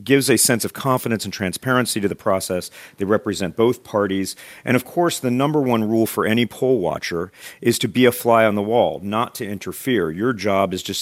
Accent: American